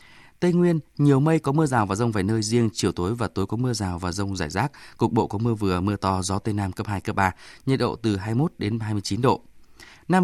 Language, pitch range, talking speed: Vietnamese, 100-130 Hz, 285 wpm